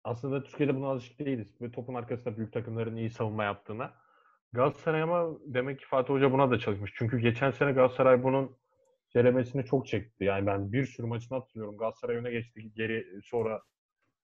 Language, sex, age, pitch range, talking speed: Turkish, male, 30-49, 115-135 Hz, 170 wpm